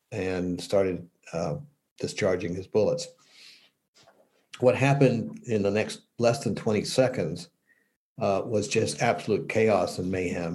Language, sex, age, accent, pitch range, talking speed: English, male, 60-79, American, 100-130 Hz, 125 wpm